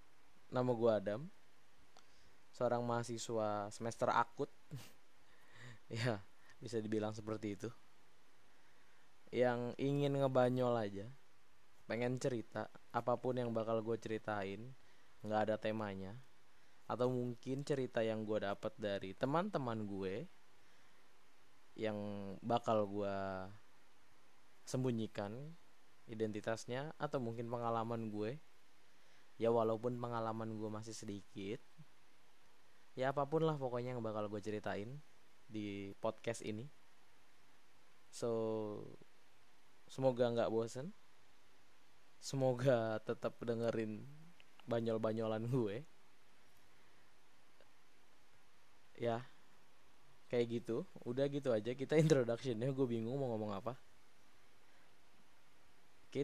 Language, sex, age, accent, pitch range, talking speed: Indonesian, male, 20-39, native, 100-125 Hz, 90 wpm